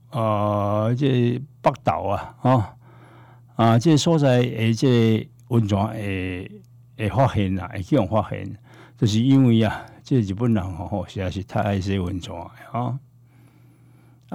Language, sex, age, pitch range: Chinese, male, 60-79, 105-130 Hz